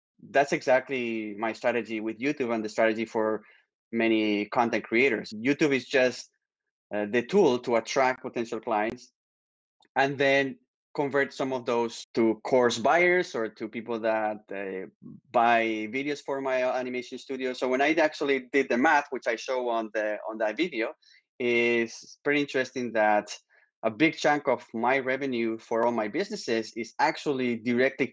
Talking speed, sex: 160 wpm, male